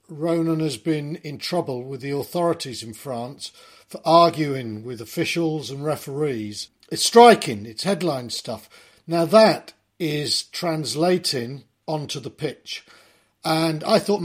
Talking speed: 130 wpm